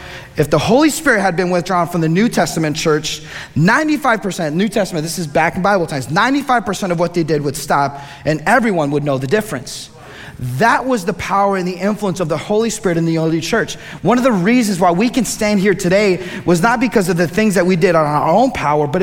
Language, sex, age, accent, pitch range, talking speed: English, male, 30-49, American, 155-210 Hz, 230 wpm